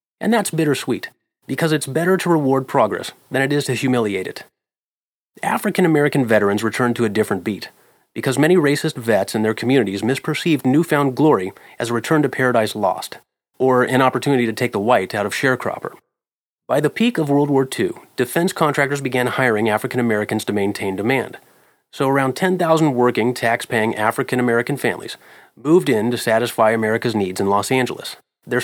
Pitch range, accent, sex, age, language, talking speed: 115-145 Hz, American, male, 30-49, English, 170 wpm